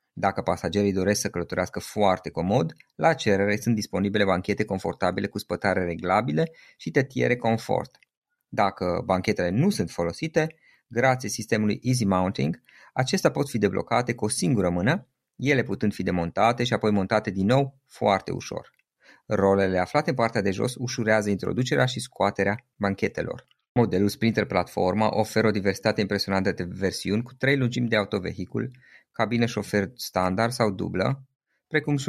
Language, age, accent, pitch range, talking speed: Romanian, 20-39, native, 95-120 Hz, 150 wpm